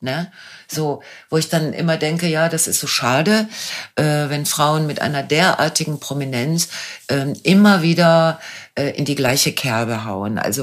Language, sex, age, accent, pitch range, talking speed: German, female, 60-79, German, 120-160 Hz, 140 wpm